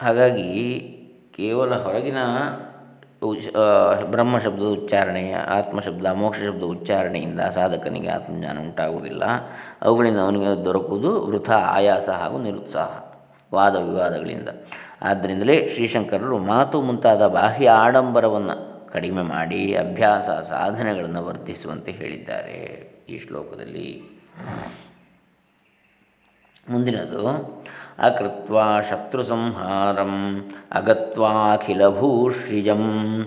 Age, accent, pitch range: 20-39, native, 100-120 Hz